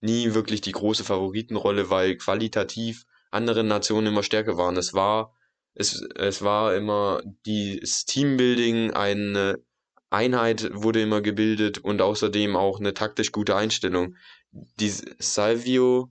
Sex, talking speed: male, 125 wpm